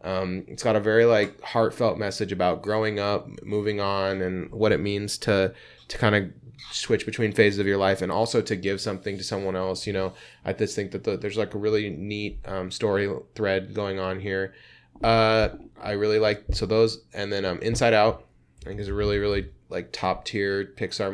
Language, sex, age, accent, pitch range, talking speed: English, male, 20-39, American, 95-110 Hz, 205 wpm